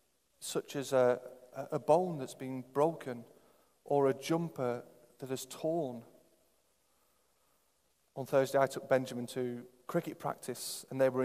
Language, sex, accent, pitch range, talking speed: English, male, British, 125-155 Hz, 135 wpm